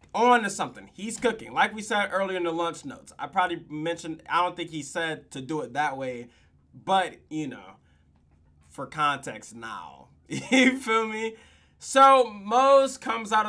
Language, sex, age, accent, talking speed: English, male, 20-39, American, 175 wpm